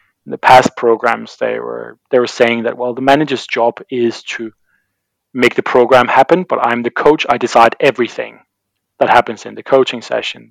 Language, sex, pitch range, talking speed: English, male, 115-130 Hz, 190 wpm